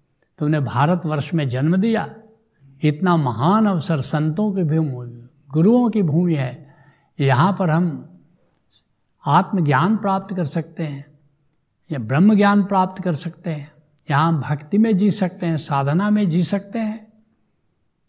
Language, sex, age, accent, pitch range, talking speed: Hindi, male, 70-89, native, 145-185 Hz, 135 wpm